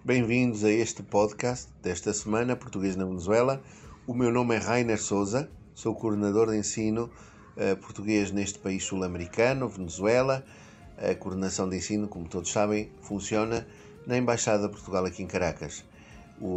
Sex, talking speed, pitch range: male, 145 wpm, 95-115 Hz